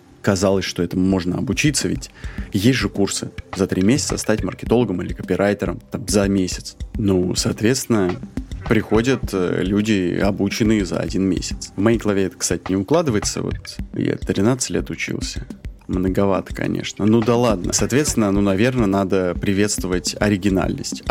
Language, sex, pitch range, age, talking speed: Russian, male, 95-125 Hz, 20-39, 140 wpm